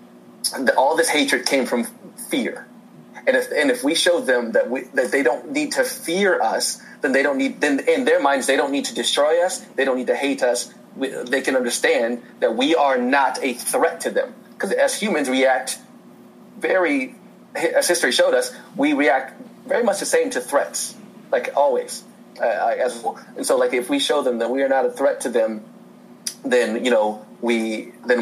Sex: male